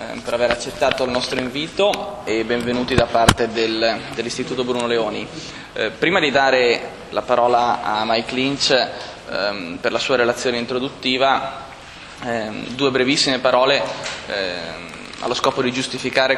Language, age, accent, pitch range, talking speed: Italian, 20-39, native, 120-150 Hz, 135 wpm